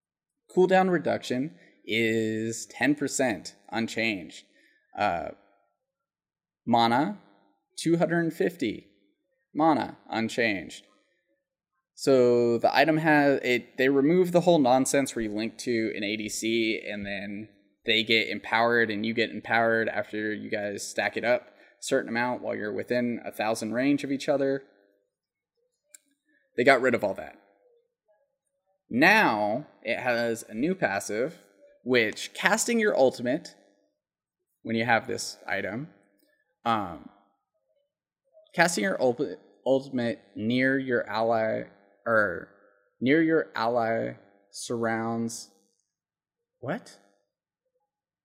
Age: 20-39